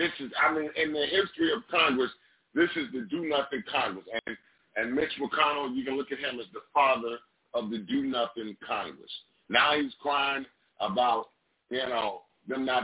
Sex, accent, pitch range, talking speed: male, American, 115-160 Hz, 180 wpm